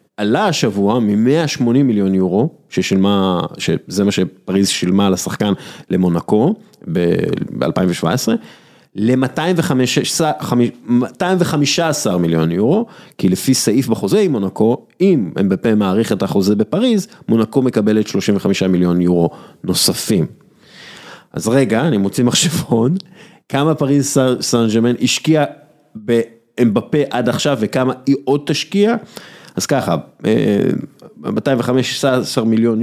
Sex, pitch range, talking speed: male, 100-150 Hz, 100 wpm